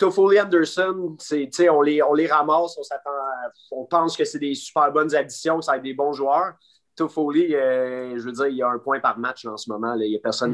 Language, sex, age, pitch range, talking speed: French, male, 30-49, 125-155 Hz, 250 wpm